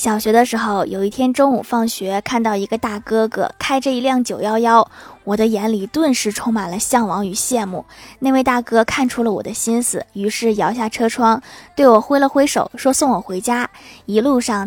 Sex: female